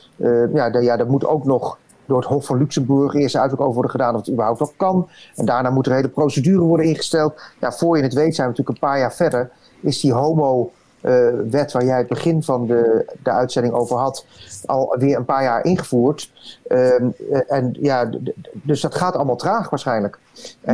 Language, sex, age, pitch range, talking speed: Dutch, male, 40-59, 130-150 Hz, 200 wpm